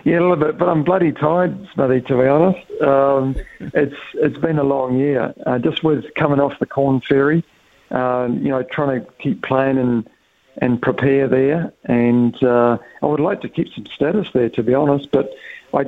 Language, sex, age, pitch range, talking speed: English, male, 50-69, 125-140 Hz, 200 wpm